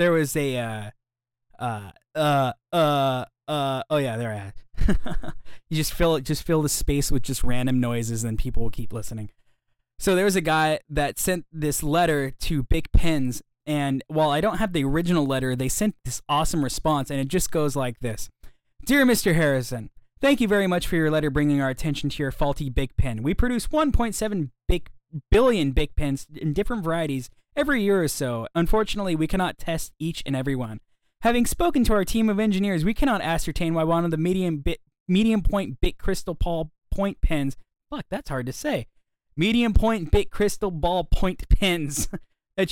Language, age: English, 20-39